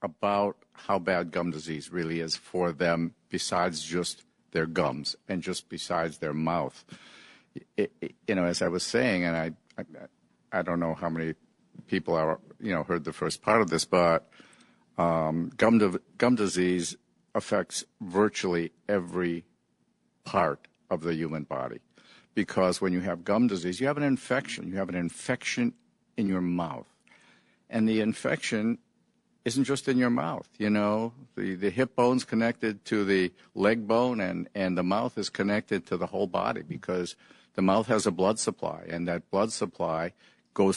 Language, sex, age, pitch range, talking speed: English, male, 50-69, 85-110 Hz, 170 wpm